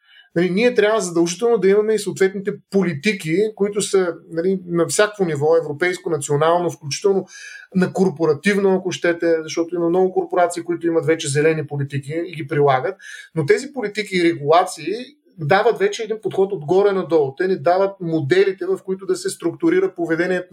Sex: male